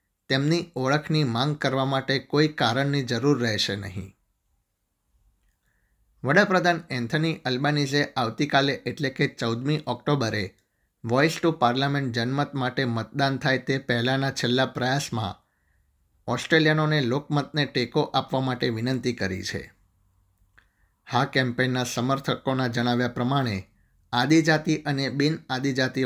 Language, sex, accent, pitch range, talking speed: Gujarati, male, native, 115-145 Hz, 105 wpm